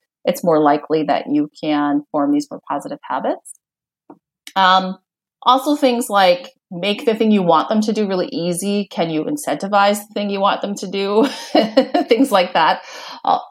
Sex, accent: female, American